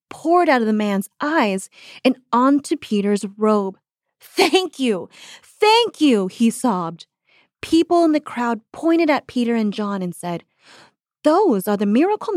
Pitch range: 205-295 Hz